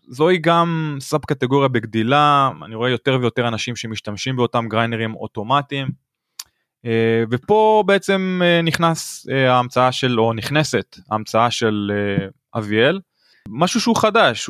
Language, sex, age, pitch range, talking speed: Hebrew, male, 20-39, 120-160 Hz, 110 wpm